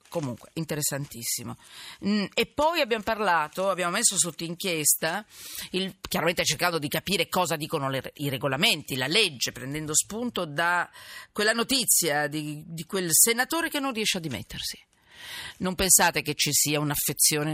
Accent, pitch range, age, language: native, 150-210 Hz, 40-59, Italian